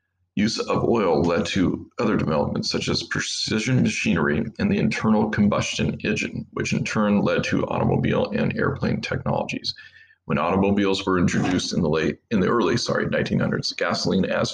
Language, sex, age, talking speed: English, male, 40-59, 160 wpm